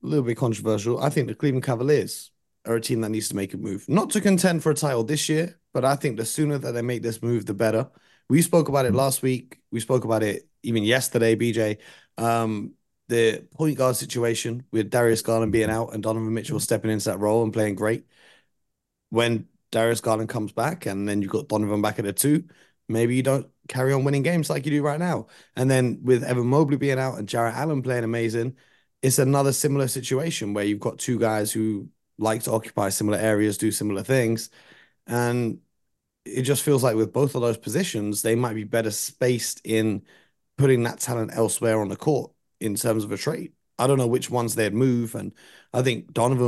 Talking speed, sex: 215 wpm, male